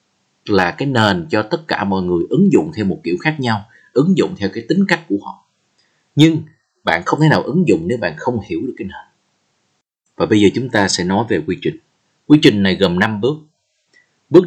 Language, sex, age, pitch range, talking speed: Vietnamese, male, 30-49, 95-150 Hz, 225 wpm